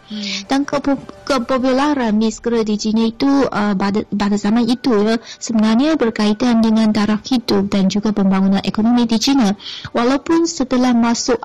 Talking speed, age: 140 wpm, 20-39